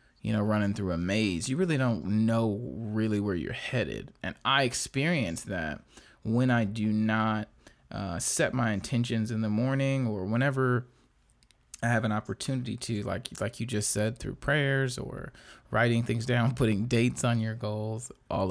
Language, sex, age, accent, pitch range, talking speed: English, male, 20-39, American, 110-145 Hz, 170 wpm